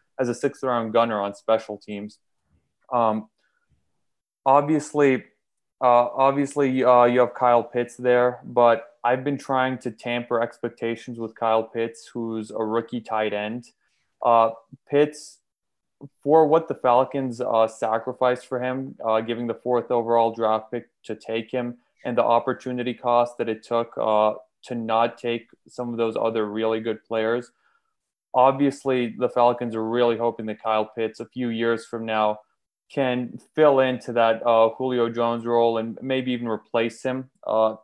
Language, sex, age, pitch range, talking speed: English, male, 20-39, 115-125 Hz, 155 wpm